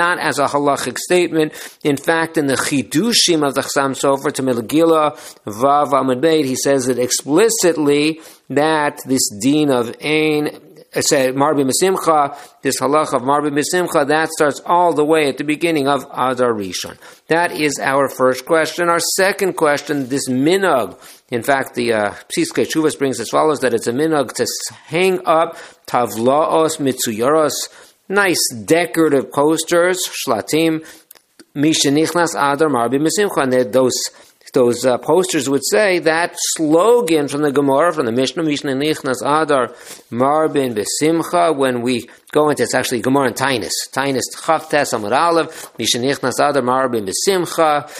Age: 50-69